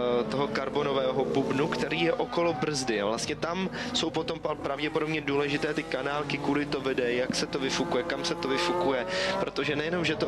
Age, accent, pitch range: 20-39, native, 130-155 Hz